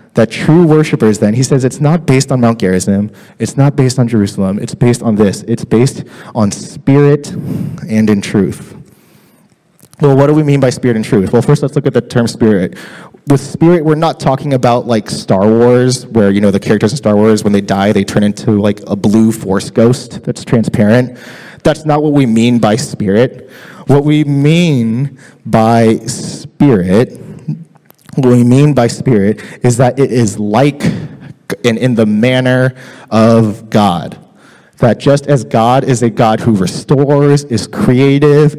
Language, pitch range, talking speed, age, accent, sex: English, 115-145 Hz, 180 wpm, 20-39, American, male